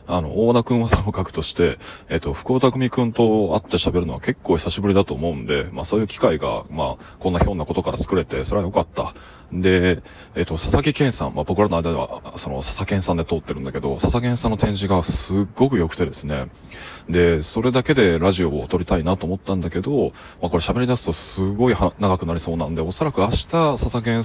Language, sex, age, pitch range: Japanese, male, 20-39, 85-110 Hz